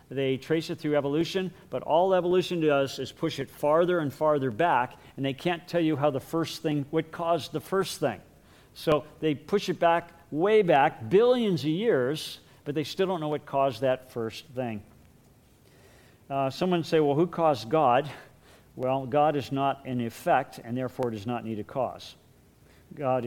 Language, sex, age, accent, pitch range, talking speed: English, male, 50-69, American, 125-160 Hz, 185 wpm